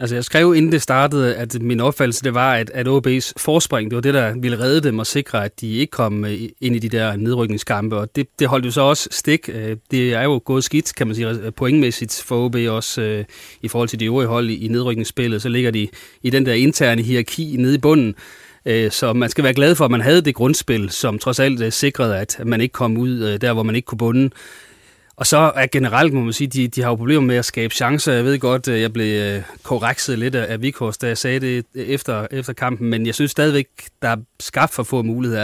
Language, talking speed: Danish, 235 wpm